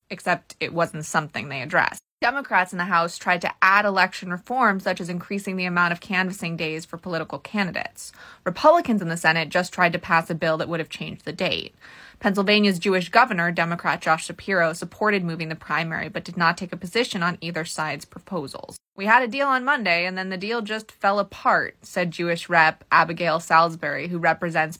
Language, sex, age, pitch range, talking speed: English, female, 20-39, 170-205 Hz, 200 wpm